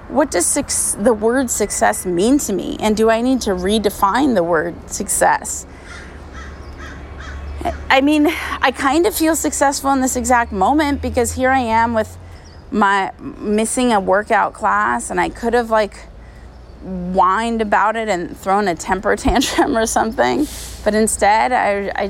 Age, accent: 30-49, American